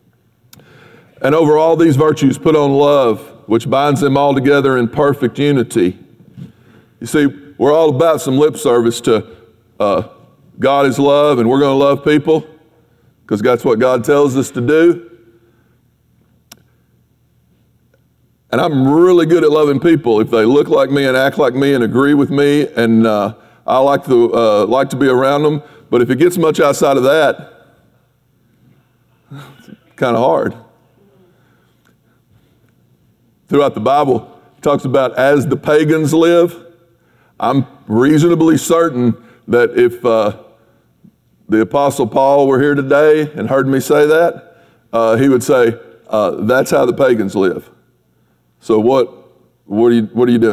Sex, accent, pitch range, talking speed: male, American, 115-150 Hz, 150 wpm